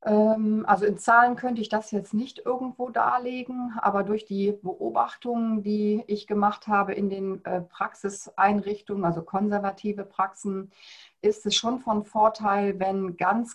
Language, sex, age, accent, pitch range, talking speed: German, female, 40-59, German, 185-210 Hz, 135 wpm